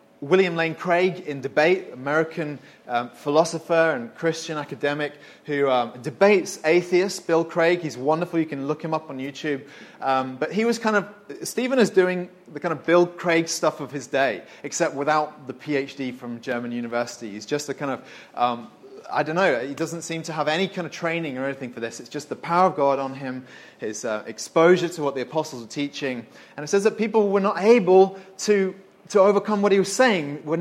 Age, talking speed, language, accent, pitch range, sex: 30-49, 210 wpm, English, British, 140-185 Hz, male